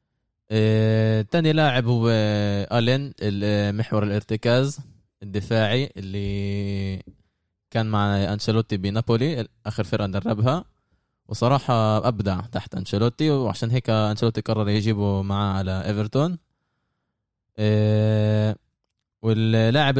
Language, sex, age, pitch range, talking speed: Arabic, male, 20-39, 100-120 Hz, 90 wpm